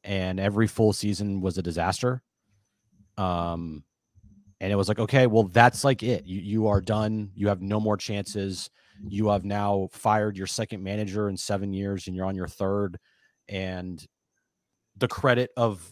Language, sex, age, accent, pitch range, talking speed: English, male, 30-49, American, 95-120 Hz, 170 wpm